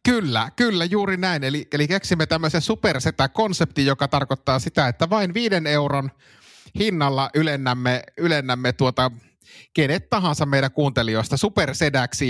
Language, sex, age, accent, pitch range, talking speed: Finnish, male, 30-49, native, 120-145 Hz, 120 wpm